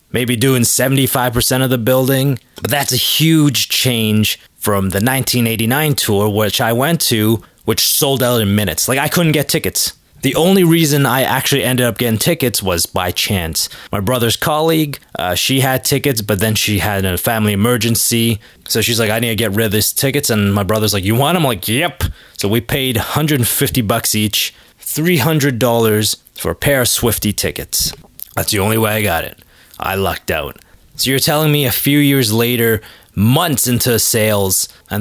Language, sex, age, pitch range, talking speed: English, male, 20-39, 105-135 Hz, 190 wpm